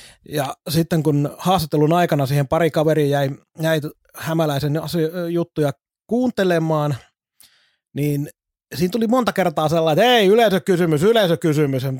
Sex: male